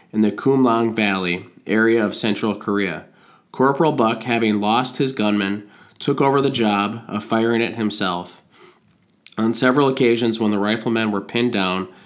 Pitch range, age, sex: 100-115 Hz, 20-39, male